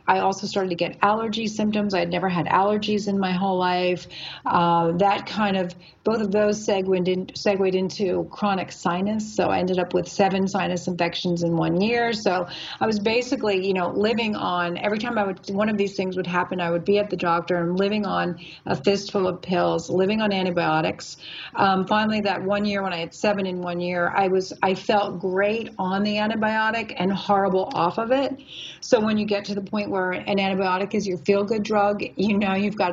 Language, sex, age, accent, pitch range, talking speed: English, female, 40-59, American, 180-210 Hz, 215 wpm